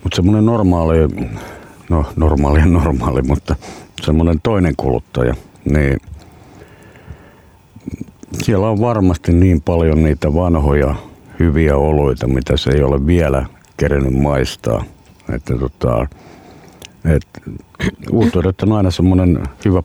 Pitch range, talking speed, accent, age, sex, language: 70-90 Hz, 105 wpm, native, 60-79, male, Finnish